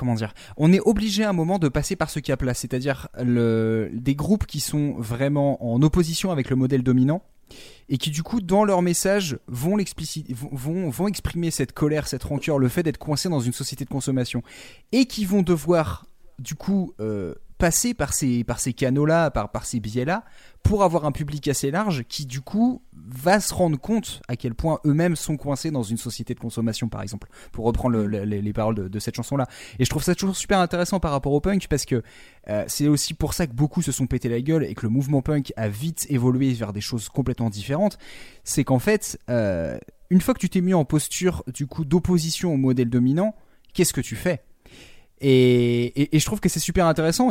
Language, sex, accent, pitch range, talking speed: French, male, French, 120-165 Hz, 220 wpm